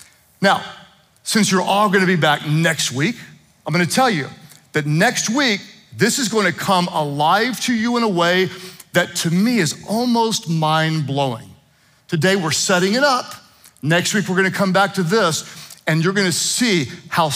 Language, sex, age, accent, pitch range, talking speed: English, male, 40-59, American, 155-205 Hz, 175 wpm